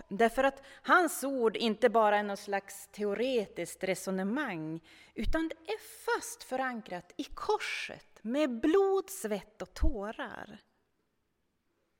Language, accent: Swedish, native